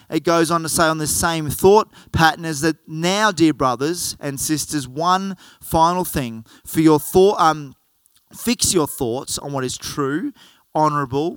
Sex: male